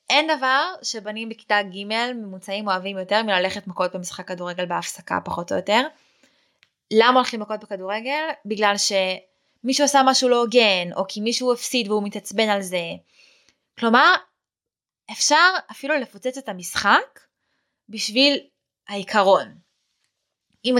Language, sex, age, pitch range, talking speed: Hebrew, female, 20-39, 195-250 Hz, 125 wpm